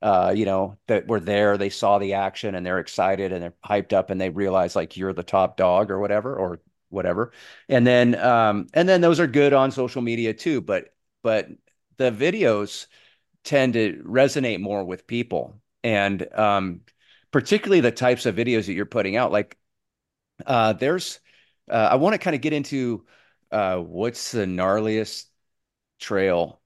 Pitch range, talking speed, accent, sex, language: 105-145 Hz, 175 wpm, American, male, English